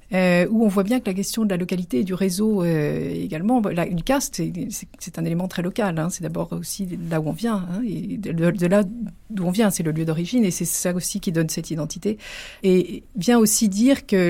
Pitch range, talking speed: 170-210 Hz, 240 wpm